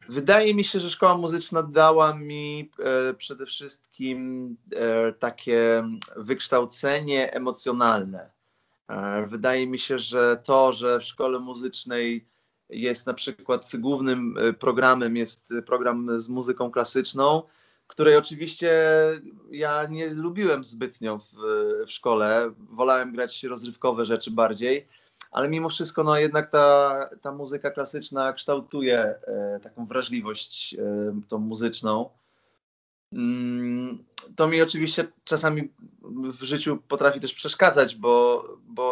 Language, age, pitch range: Polish, 30-49, 125-150 Hz